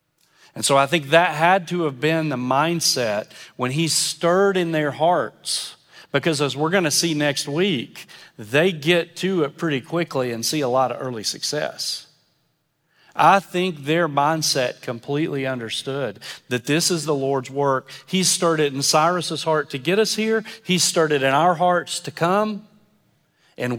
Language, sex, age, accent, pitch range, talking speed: English, male, 40-59, American, 130-170 Hz, 175 wpm